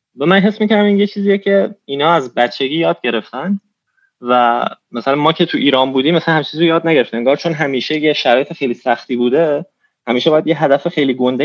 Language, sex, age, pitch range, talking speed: Persian, male, 20-39, 125-165 Hz, 200 wpm